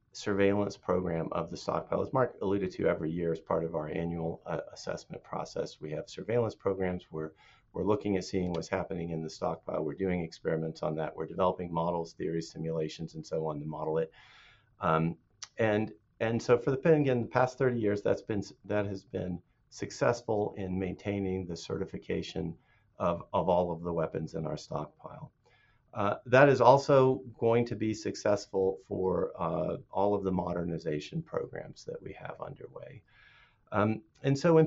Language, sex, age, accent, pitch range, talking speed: English, male, 50-69, American, 90-120 Hz, 180 wpm